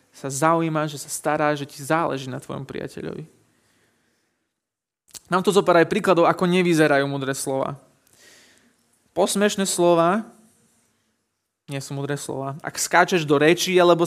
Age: 20-39